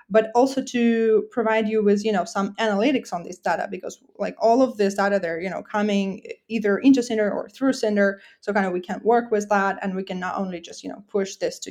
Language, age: English, 20-39